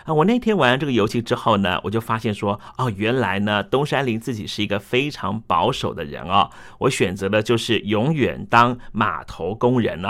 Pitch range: 105-125 Hz